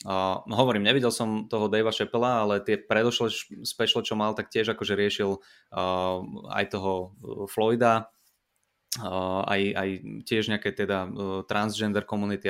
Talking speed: 155 wpm